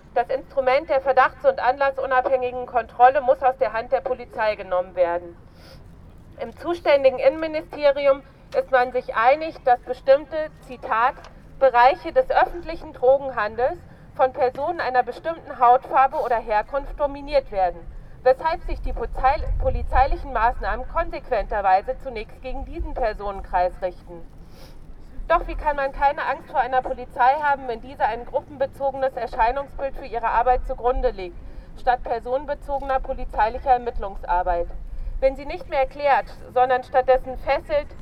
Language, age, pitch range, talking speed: German, 40-59, 235-275 Hz, 130 wpm